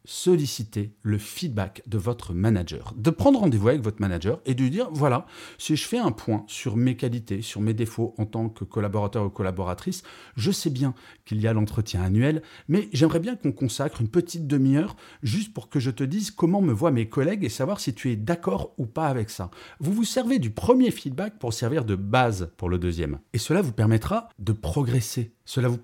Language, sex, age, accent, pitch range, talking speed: French, male, 40-59, French, 110-150 Hz, 215 wpm